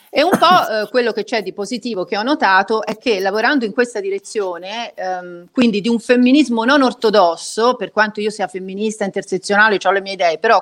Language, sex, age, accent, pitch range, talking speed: Italian, female, 40-59, native, 190-245 Hz, 205 wpm